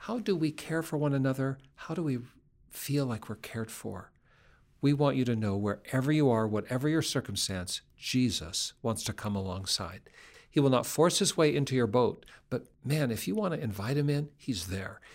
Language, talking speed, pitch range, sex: English, 200 wpm, 110-145 Hz, male